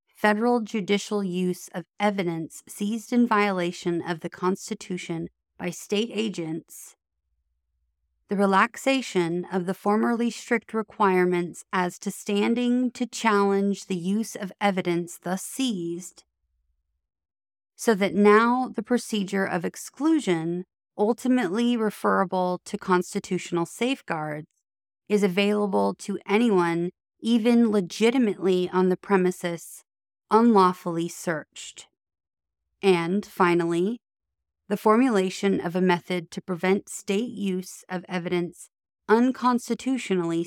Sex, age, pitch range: female, 30-49, 175-215 Hz